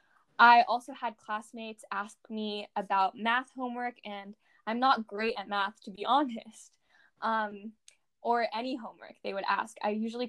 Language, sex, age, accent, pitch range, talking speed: English, female, 10-29, American, 205-235 Hz, 155 wpm